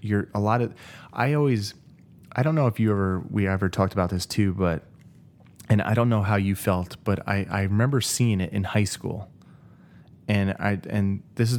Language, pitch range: English, 95-105 Hz